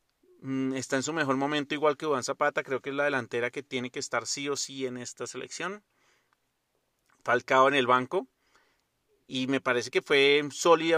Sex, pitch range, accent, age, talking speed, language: male, 130-150 Hz, Colombian, 30-49, 185 wpm, Spanish